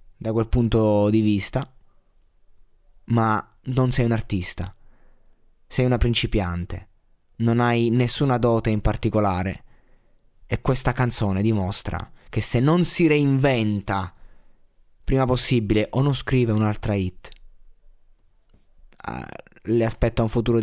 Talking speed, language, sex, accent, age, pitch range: 115 wpm, Italian, male, native, 20-39, 100-120 Hz